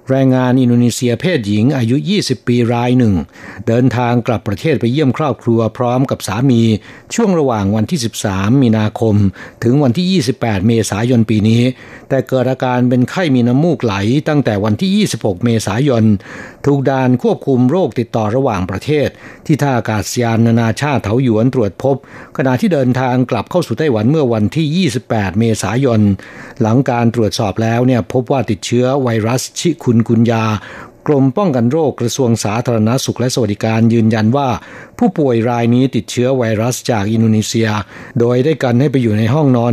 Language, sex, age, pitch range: Thai, male, 60-79, 115-135 Hz